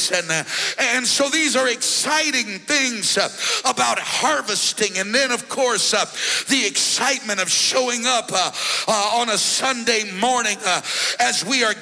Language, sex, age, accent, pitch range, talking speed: English, male, 60-79, American, 220-290 Hz, 155 wpm